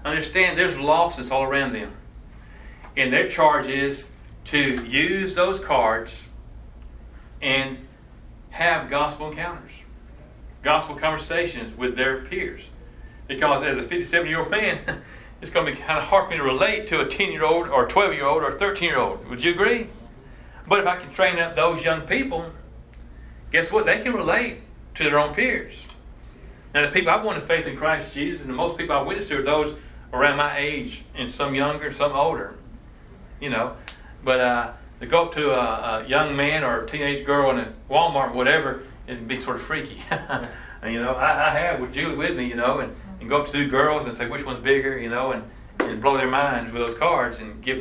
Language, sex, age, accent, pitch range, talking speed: English, male, 40-59, American, 115-155 Hz, 195 wpm